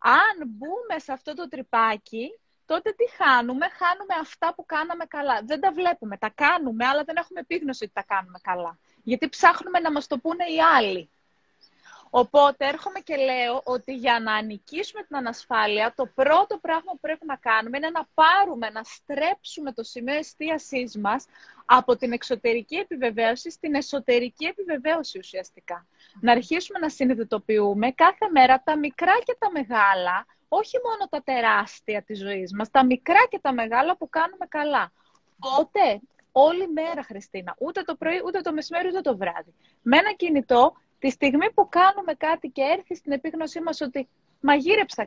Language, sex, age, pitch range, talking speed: Greek, female, 20-39, 245-340 Hz, 165 wpm